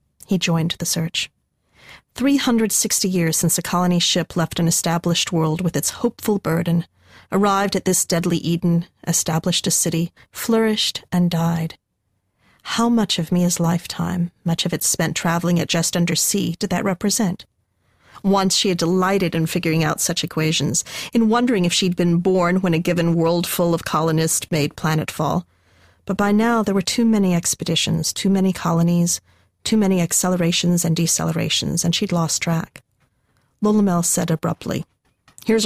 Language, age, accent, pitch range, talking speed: English, 40-59, American, 165-190 Hz, 165 wpm